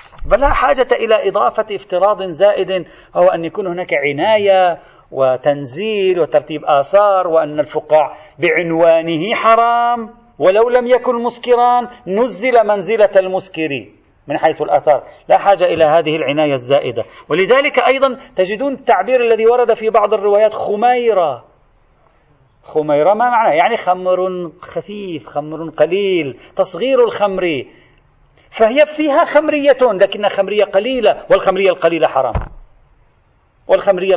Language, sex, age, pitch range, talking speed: Arabic, male, 40-59, 165-230 Hz, 115 wpm